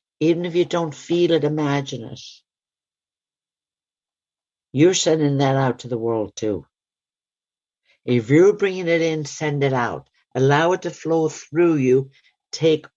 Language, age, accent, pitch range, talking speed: English, 60-79, British, 115-160 Hz, 145 wpm